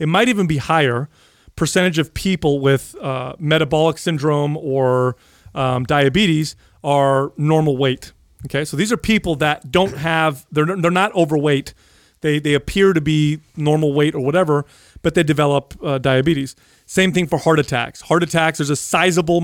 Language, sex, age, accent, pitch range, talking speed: English, male, 40-59, American, 140-165 Hz, 165 wpm